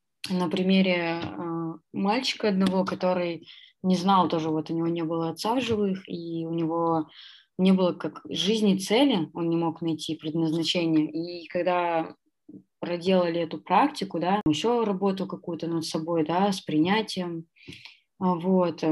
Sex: female